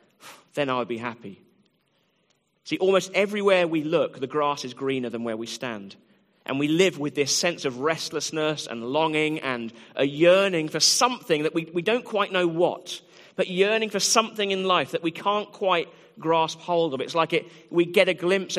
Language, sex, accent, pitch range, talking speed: English, male, British, 140-180 Hz, 195 wpm